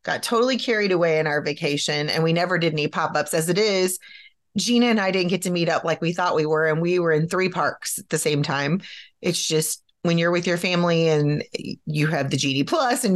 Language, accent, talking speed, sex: English, American, 240 wpm, female